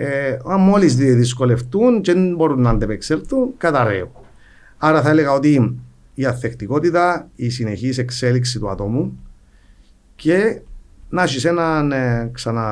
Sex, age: male, 50-69